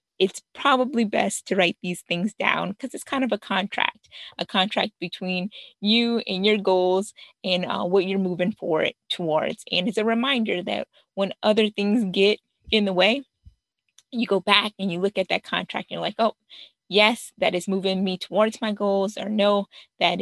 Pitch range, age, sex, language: 185-230 Hz, 20-39, female, English